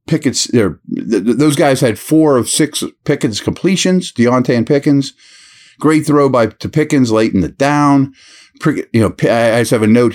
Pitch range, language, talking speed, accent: 110-150 Hz, English, 195 wpm, American